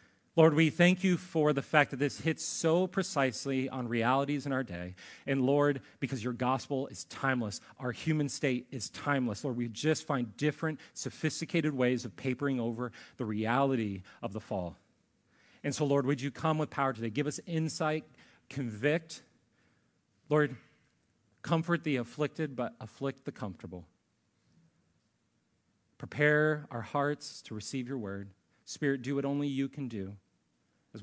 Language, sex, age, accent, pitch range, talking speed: English, male, 30-49, American, 125-170 Hz, 155 wpm